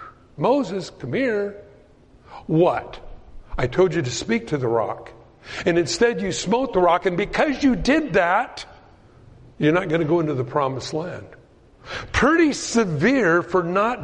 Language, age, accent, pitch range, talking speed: English, 60-79, American, 135-190 Hz, 155 wpm